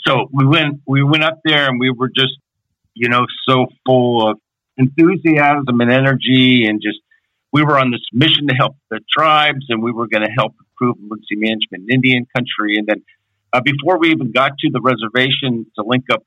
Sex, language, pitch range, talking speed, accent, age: male, English, 110-135 Hz, 205 wpm, American, 50-69